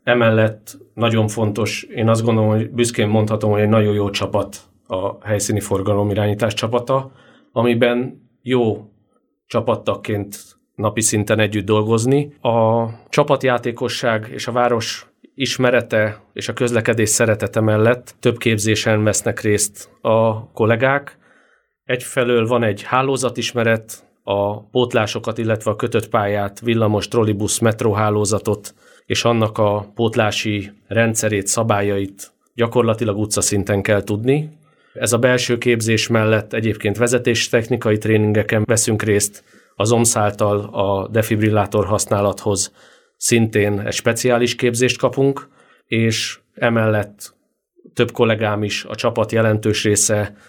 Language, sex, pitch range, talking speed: Hungarian, male, 105-120 Hz, 115 wpm